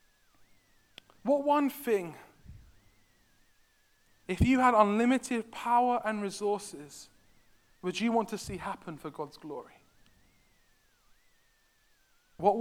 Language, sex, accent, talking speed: English, male, British, 95 wpm